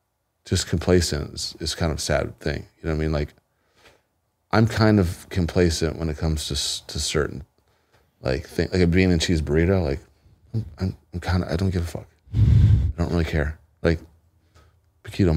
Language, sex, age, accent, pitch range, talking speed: English, male, 30-49, American, 80-95 Hz, 190 wpm